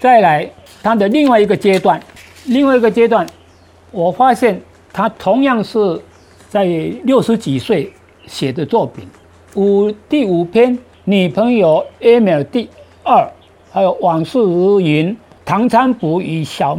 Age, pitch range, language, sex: 50-69, 155-230 Hz, Chinese, male